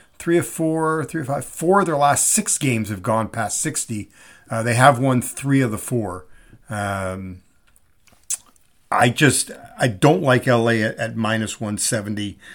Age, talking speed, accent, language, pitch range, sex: 50-69, 165 wpm, American, English, 110-145 Hz, male